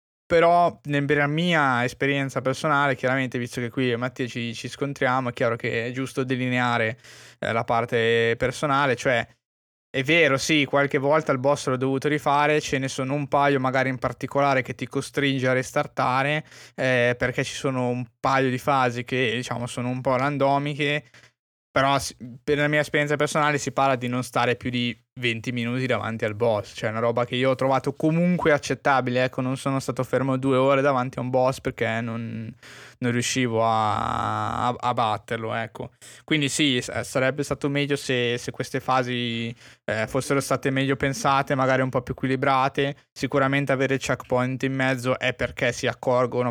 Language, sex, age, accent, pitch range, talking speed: Italian, male, 20-39, native, 120-140 Hz, 180 wpm